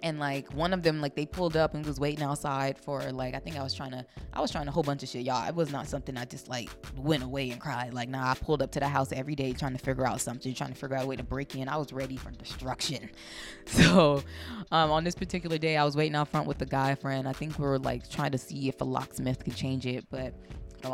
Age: 20-39